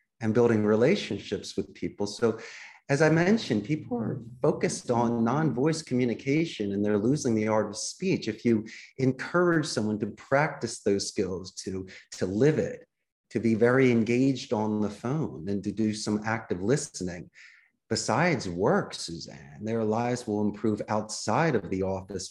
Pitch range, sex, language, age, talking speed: 105-125 Hz, male, English, 30-49, 155 wpm